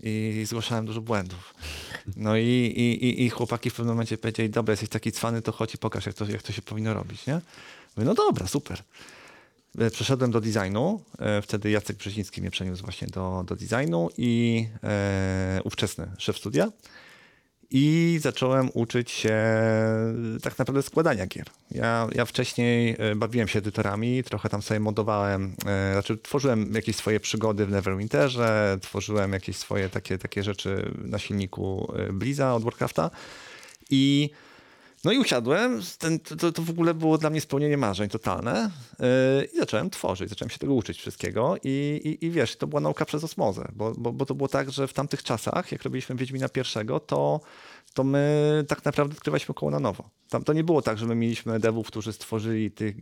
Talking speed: 170 wpm